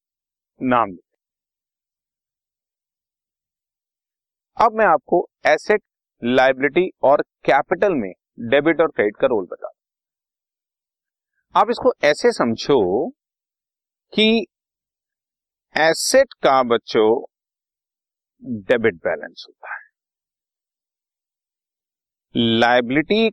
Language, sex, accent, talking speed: Hindi, male, native, 75 wpm